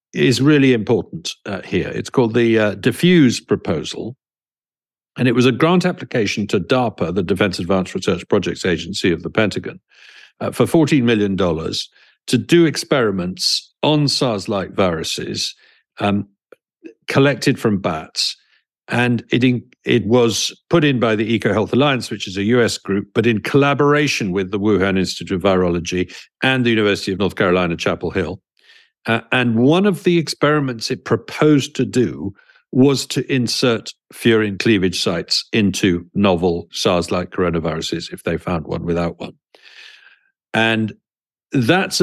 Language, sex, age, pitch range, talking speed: English, male, 50-69, 100-135 Hz, 145 wpm